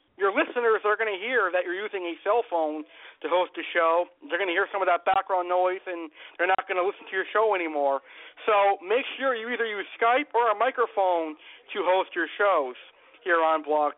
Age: 50-69